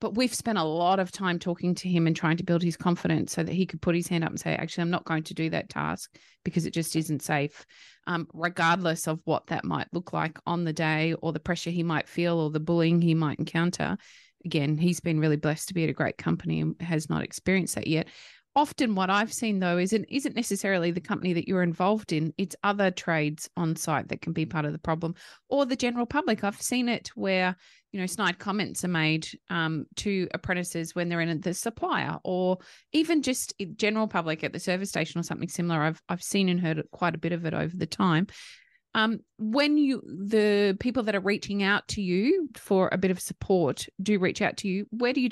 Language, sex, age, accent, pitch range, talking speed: English, female, 30-49, Australian, 165-200 Hz, 235 wpm